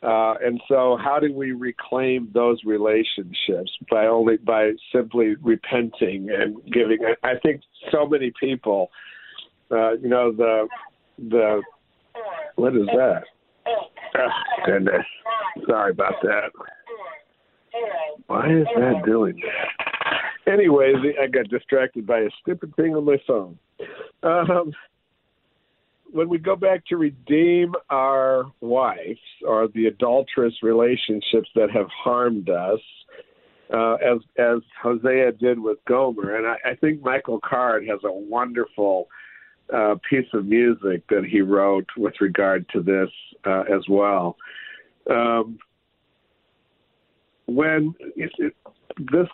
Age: 60-79